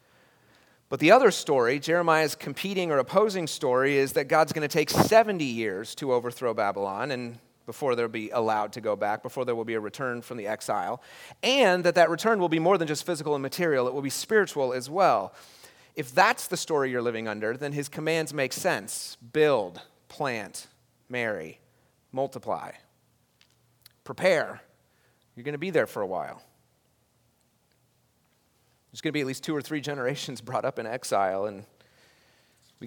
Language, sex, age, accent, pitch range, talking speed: English, male, 30-49, American, 120-155 Hz, 175 wpm